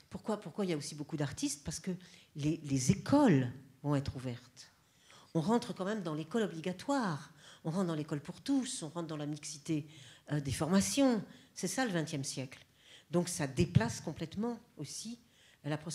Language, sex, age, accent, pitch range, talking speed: French, female, 50-69, French, 130-165 Hz, 180 wpm